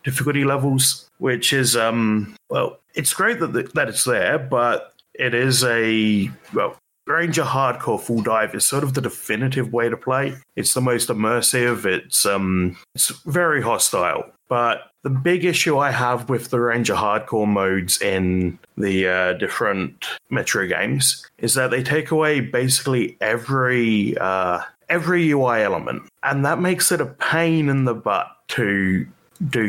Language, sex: English, male